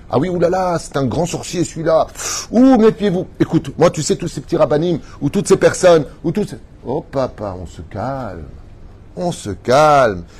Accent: French